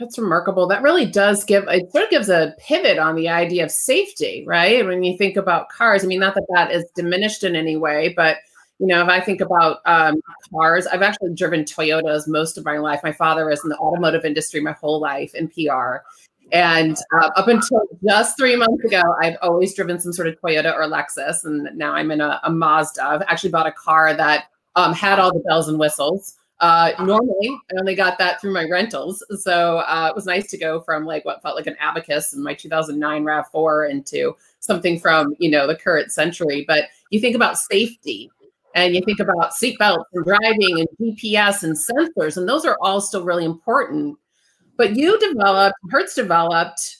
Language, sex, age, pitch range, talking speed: English, female, 30-49, 160-210 Hz, 205 wpm